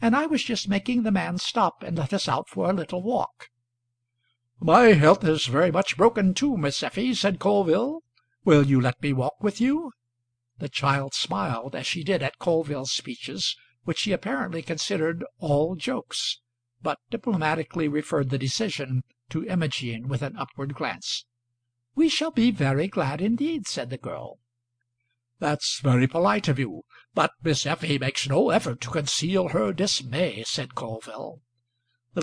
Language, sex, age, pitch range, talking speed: English, male, 60-79, 130-195 Hz, 160 wpm